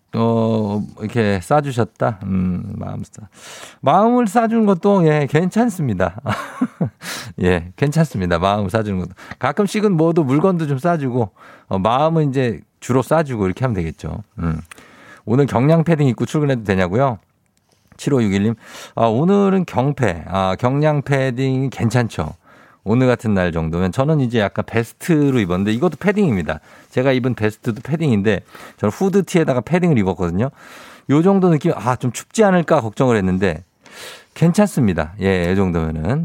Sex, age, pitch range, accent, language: male, 50-69, 100-155 Hz, native, Korean